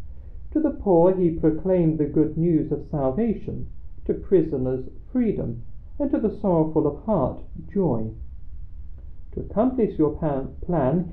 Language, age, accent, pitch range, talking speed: English, 40-59, British, 110-175 Hz, 130 wpm